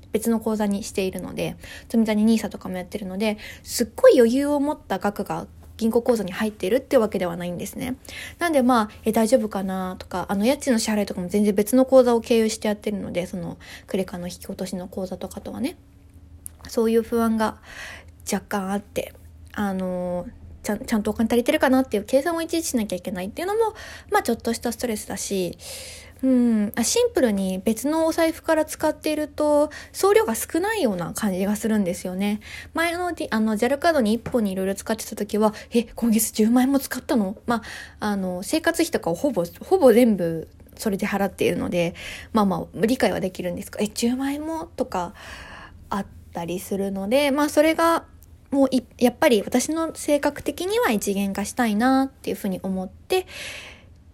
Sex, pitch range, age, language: female, 195-265 Hz, 20-39, Japanese